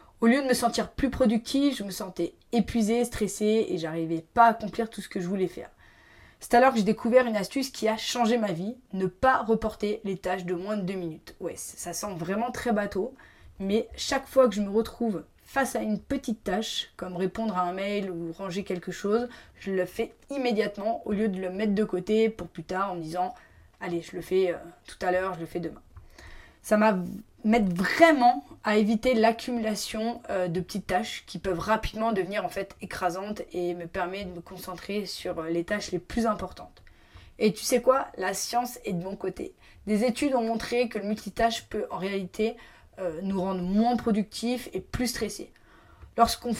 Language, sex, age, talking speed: French, female, 20-39, 205 wpm